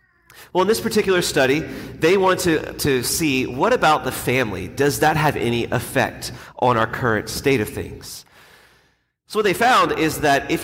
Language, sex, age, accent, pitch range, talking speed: English, male, 30-49, American, 120-155 Hz, 180 wpm